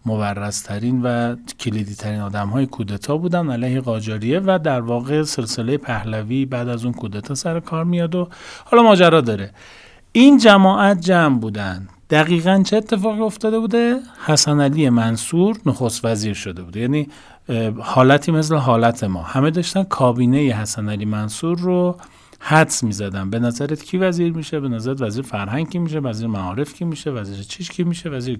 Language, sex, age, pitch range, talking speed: Persian, male, 40-59, 120-180 Hz, 165 wpm